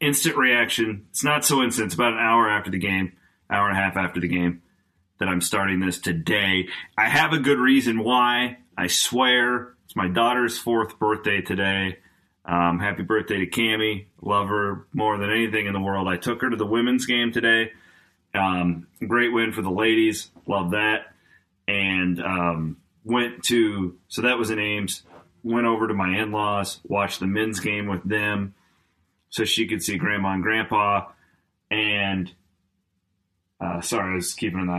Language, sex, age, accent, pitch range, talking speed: English, male, 30-49, American, 85-115 Hz, 175 wpm